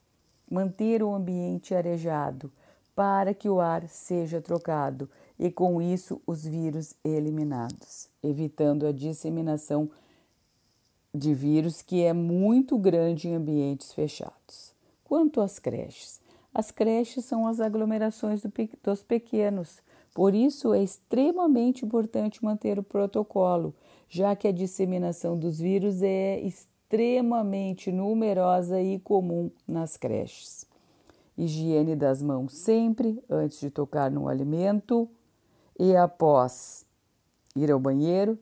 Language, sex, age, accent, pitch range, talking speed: Portuguese, female, 50-69, Brazilian, 150-200 Hz, 115 wpm